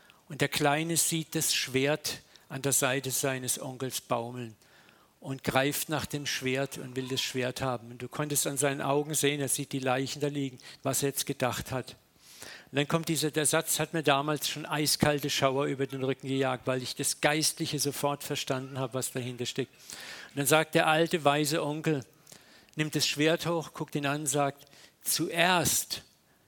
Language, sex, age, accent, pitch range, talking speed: German, male, 50-69, German, 130-150 Hz, 190 wpm